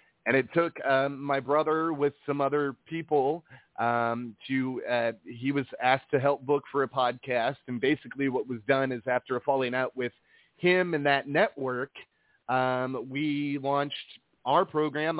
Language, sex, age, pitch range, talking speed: English, male, 30-49, 125-145 Hz, 170 wpm